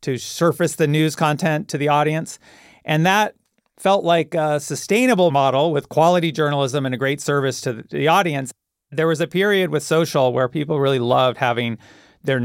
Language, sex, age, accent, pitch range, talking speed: English, male, 40-59, American, 130-160 Hz, 180 wpm